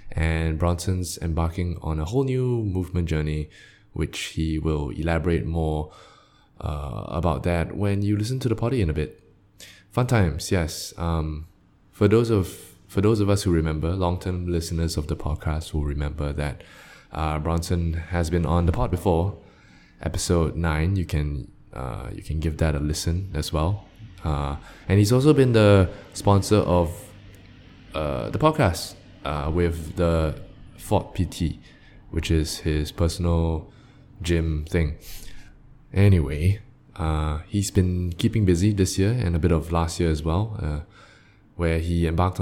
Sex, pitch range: male, 80-100 Hz